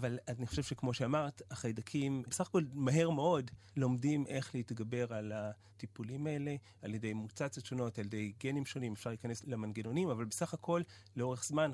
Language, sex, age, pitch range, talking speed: Hebrew, male, 30-49, 110-140 Hz, 165 wpm